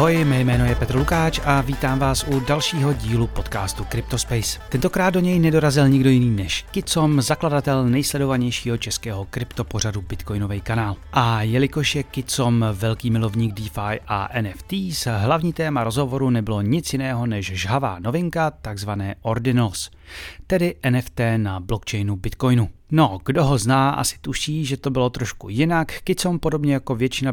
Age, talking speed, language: 30-49, 150 wpm, Czech